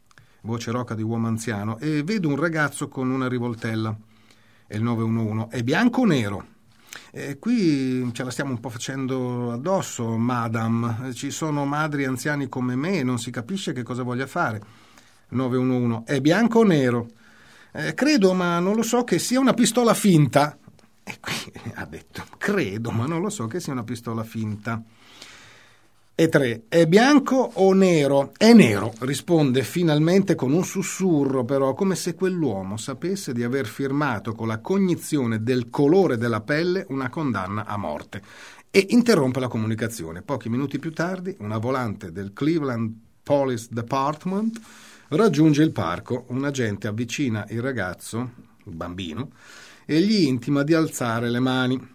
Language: Italian